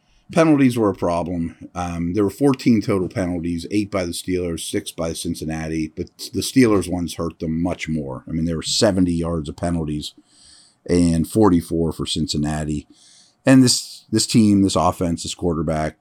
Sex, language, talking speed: male, English, 170 wpm